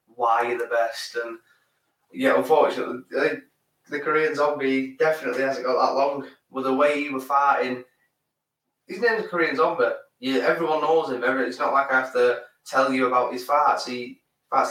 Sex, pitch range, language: male, 125-145 Hz, English